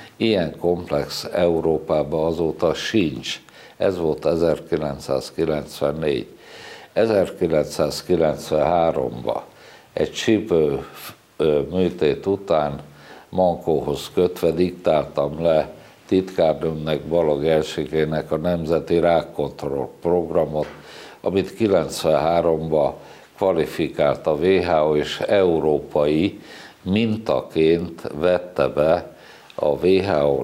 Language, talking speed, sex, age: Hungarian, 70 wpm, male, 60-79